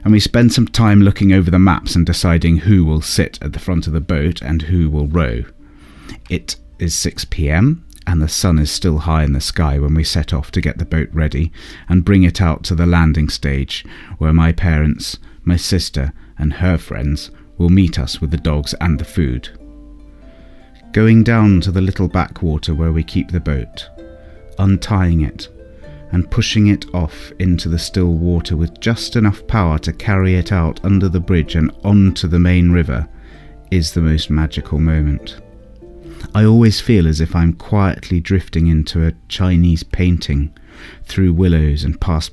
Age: 30-49